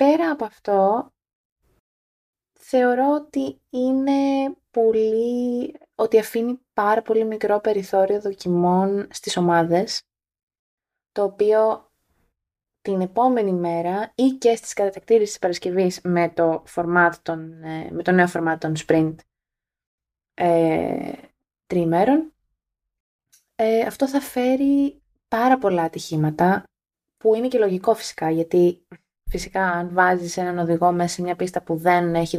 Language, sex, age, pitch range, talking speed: Greek, female, 20-39, 170-230 Hz, 120 wpm